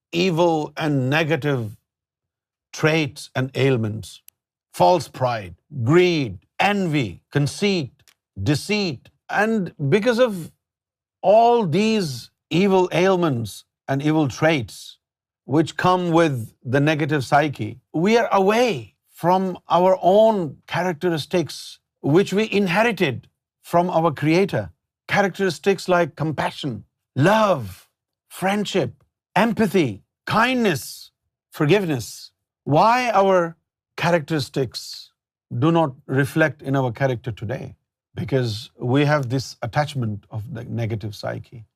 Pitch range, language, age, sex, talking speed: 130-180 Hz, Urdu, 50-69, male, 100 wpm